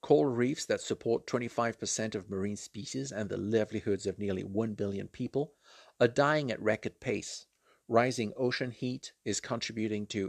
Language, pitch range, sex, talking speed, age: English, 105-130 Hz, male, 155 wpm, 50-69